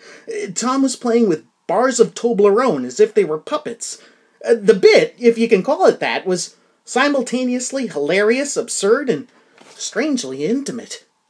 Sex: male